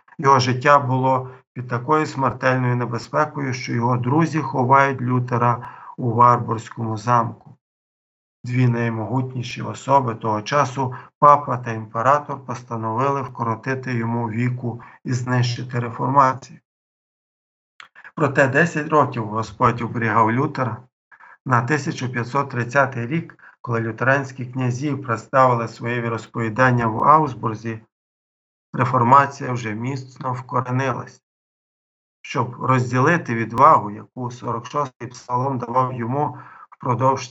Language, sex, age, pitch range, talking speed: Ukrainian, male, 50-69, 115-135 Hz, 100 wpm